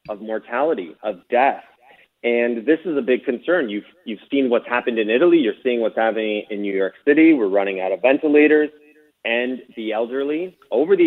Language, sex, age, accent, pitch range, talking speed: English, male, 30-49, American, 125-160 Hz, 190 wpm